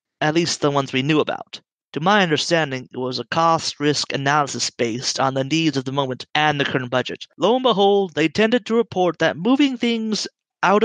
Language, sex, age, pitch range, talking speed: English, male, 30-49, 135-165 Hz, 205 wpm